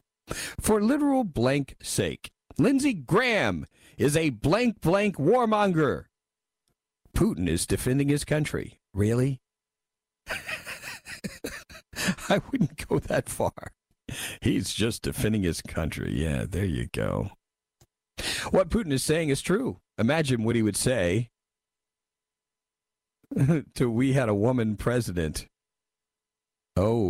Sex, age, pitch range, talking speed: male, 50-69, 80-130 Hz, 110 wpm